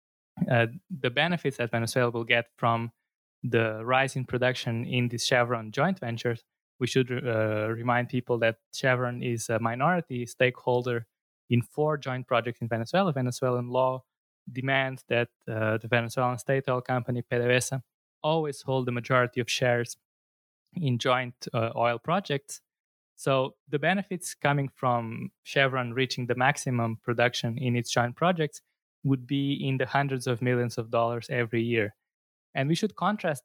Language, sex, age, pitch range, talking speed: English, male, 20-39, 120-140 Hz, 150 wpm